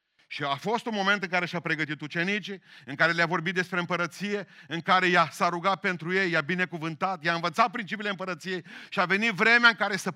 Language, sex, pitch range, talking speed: Romanian, male, 135-210 Hz, 215 wpm